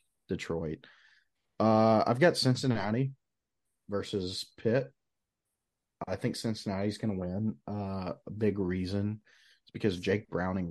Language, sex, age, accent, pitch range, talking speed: English, male, 30-49, American, 90-110 Hz, 125 wpm